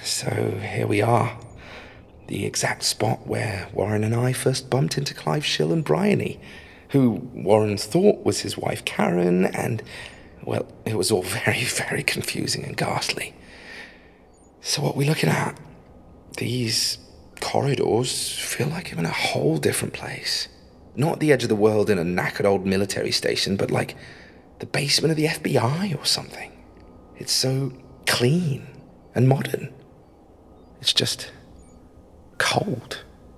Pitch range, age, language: 85-125 Hz, 30-49, English